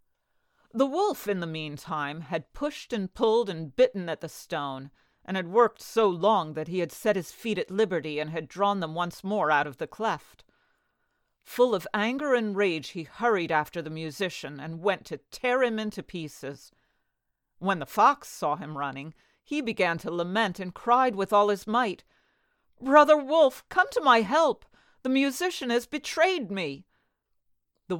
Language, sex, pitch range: English, female, 160-230 Hz